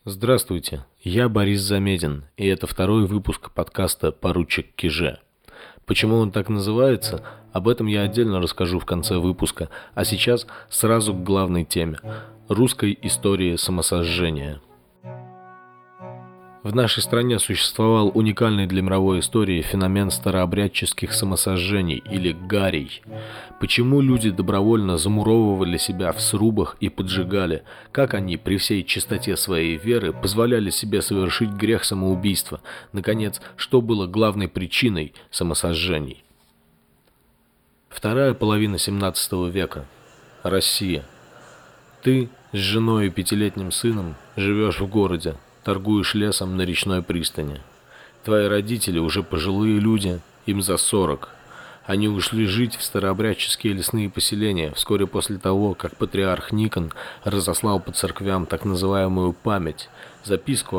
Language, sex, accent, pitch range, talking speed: Russian, male, native, 90-110 Hz, 115 wpm